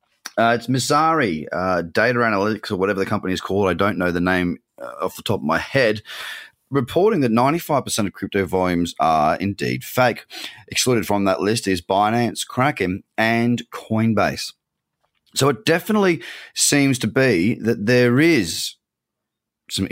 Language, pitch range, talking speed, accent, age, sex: English, 100-135 Hz, 155 wpm, Australian, 30-49, male